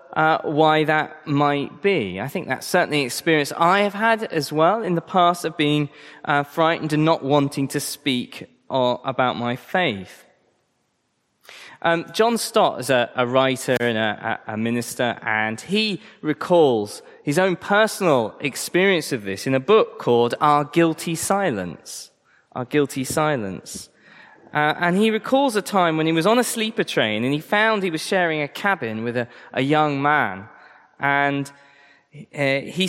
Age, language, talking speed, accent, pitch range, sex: 20-39, English, 170 wpm, British, 135-175 Hz, male